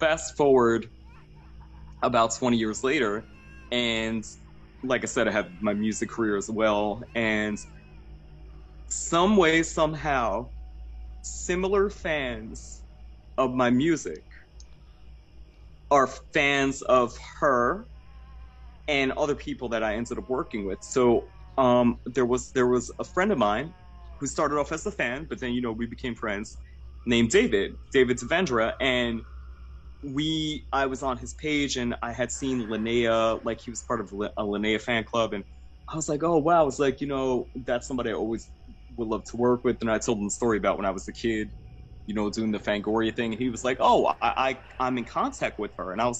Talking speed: 180 wpm